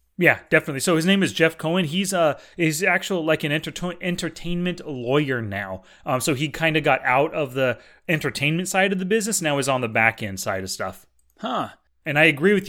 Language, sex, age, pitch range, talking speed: English, male, 30-49, 140-185 Hz, 220 wpm